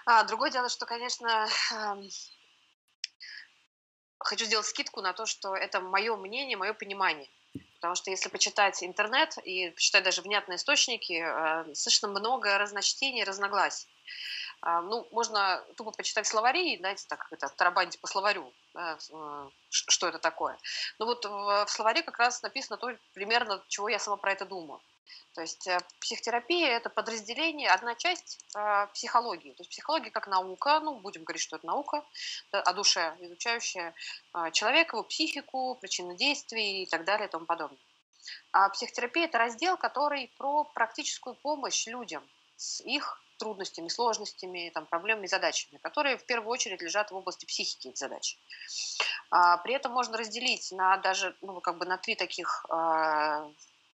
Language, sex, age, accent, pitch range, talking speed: Russian, female, 20-39, native, 185-240 Hz, 155 wpm